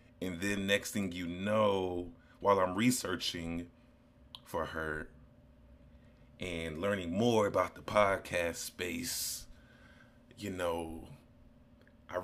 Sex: male